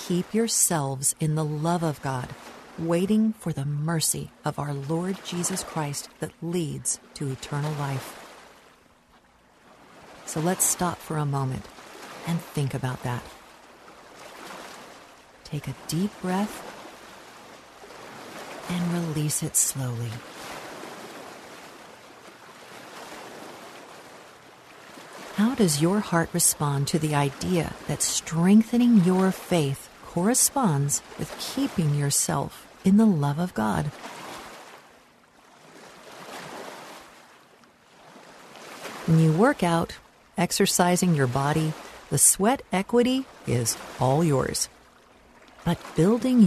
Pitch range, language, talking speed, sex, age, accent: 150-190 Hz, English, 95 wpm, female, 50-69, American